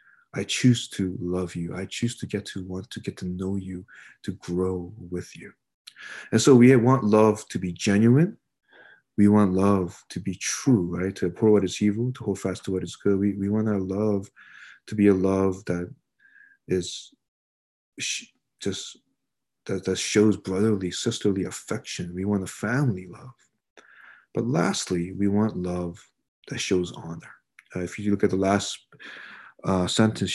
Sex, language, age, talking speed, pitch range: male, English, 30-49, 170 wpm, 90-110 Hz